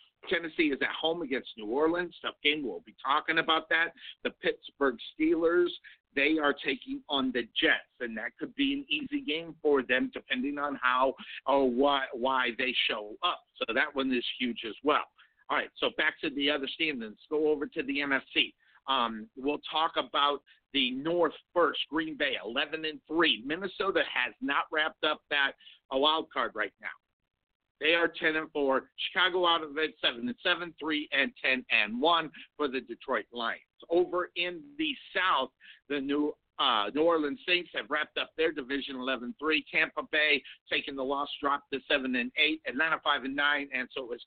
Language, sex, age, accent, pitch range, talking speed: English, male, 50-69, American, 140-175 Hz, 185 wpm